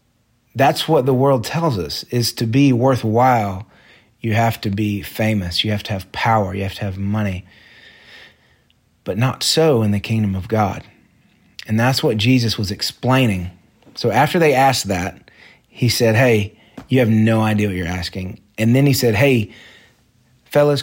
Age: 30-49